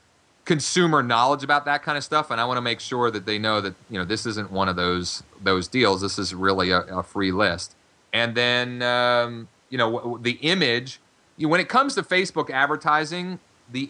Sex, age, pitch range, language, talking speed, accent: male, 30-49, 110-145 Hz, English, 205 wpm, American